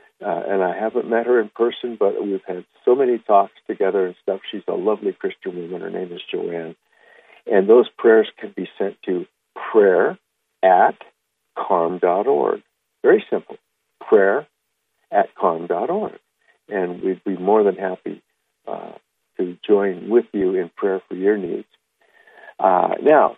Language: English